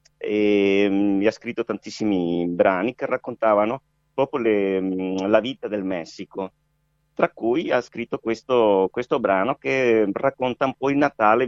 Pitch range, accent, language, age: 95-125 Hz, native, Italian, 50-69